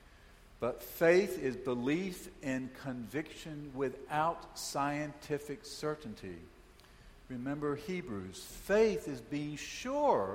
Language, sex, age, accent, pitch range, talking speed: English, male, 60-79, American, 125-165 Hz, 85 wpm